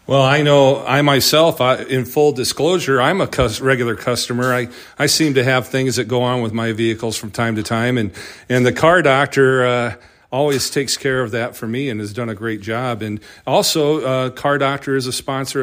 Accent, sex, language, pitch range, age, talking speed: American, male, English, 115-135 Hz, 40-59, 210 wpm